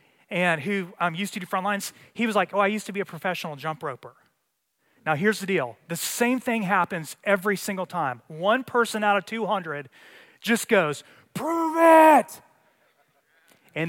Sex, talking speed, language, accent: male, 175 wpm, English, American